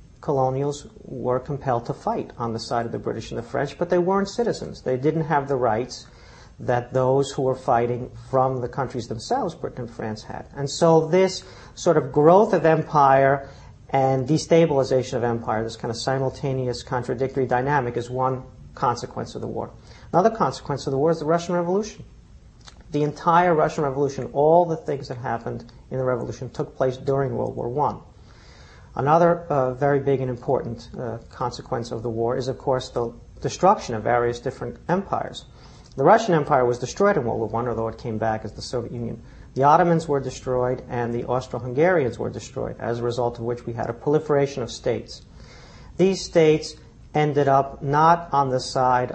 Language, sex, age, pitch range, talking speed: English, male, 50-69, 120-145 Hz, 185 wpm